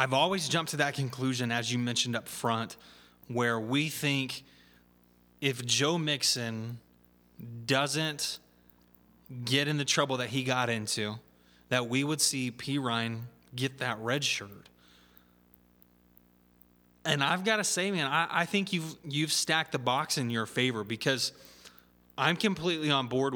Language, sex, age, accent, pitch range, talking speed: English, male, 20-39, American, 115-145 Hz, 150 wpm